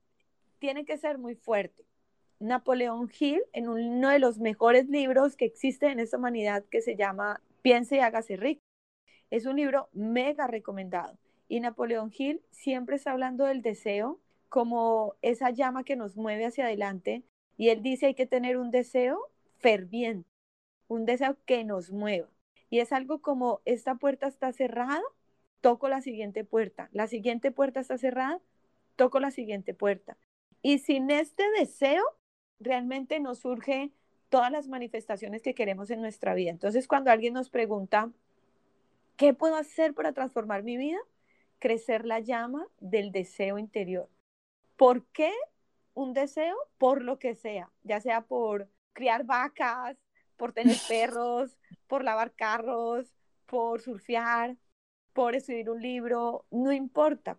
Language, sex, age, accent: Spanish, female, 30-49, Colombian